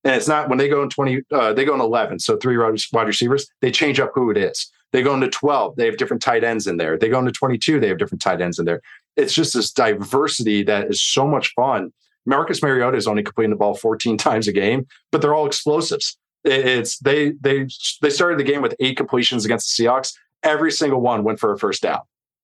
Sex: male